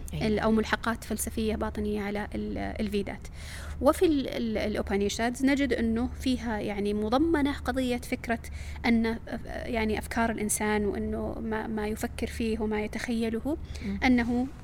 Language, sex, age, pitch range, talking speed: Arabic, female, 20-39, 210-245 Hz, 105 wpm